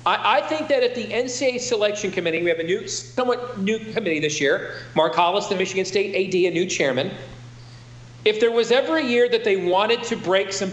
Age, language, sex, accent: 40-59, English, male, American